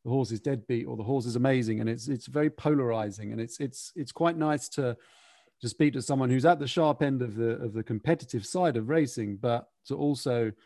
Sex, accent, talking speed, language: male, British, 225 wpm, English